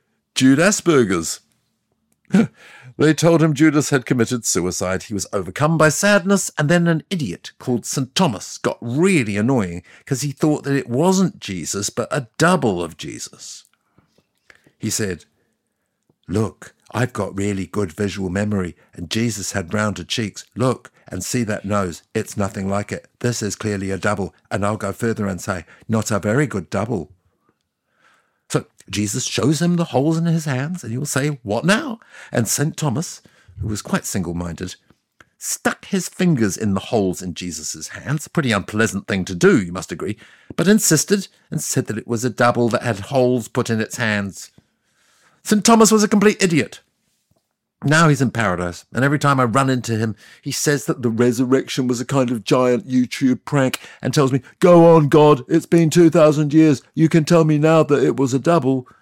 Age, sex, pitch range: 60-79, male, 105-155 Hz